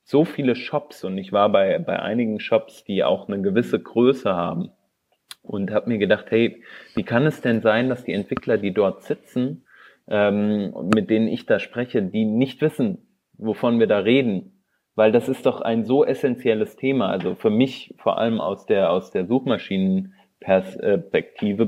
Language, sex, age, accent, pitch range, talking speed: German, male, 30-49, German, 100-135 Hz, 175 wpm